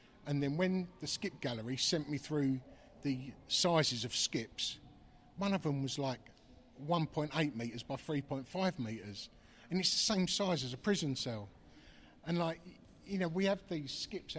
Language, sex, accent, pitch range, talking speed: English, male, British, 125-165 Hz, 165 wpm